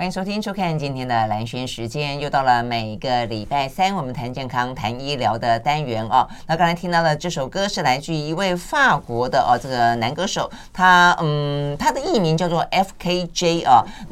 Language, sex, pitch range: Chinese, female, 130-185 Hz